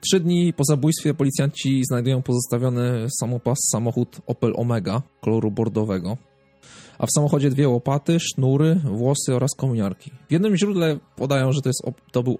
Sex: male